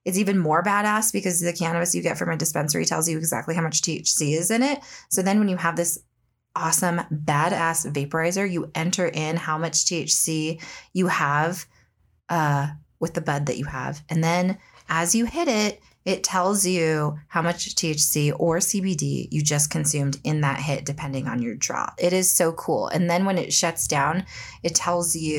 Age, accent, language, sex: 20-39, American, English, female